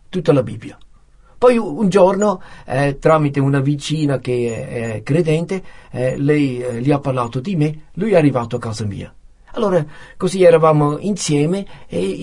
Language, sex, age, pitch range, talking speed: Italian, male, 50-69, 130-170 Hz, 160 wpm